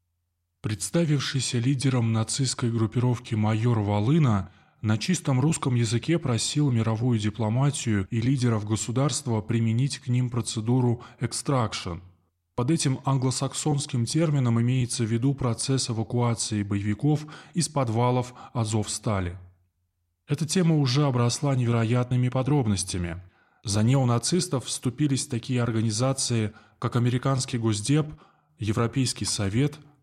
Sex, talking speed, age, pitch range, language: male, 100 wpm, 20-39, 110-140 Hz, Russian